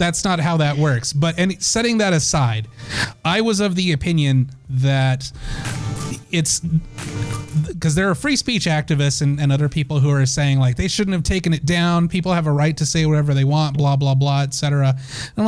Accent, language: American, English